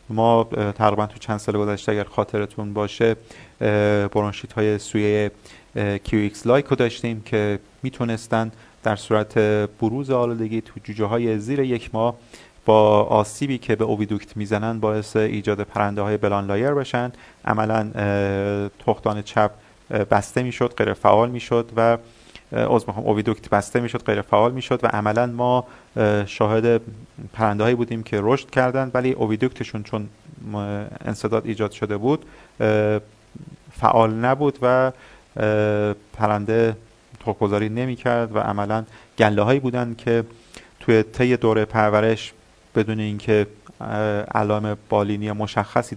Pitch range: 105-115 Hz